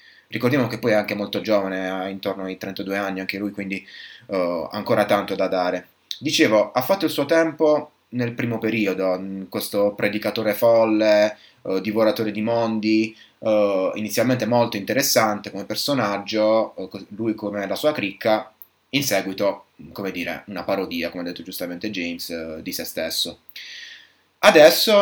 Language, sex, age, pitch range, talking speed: Italian, male, 20-39, 100-140 Hz, 155 wpm